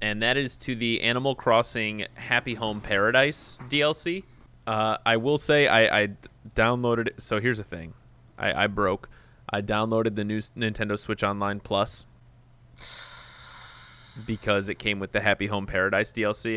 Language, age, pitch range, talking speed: English, 20-39, 105-120 Hz, 155 wpm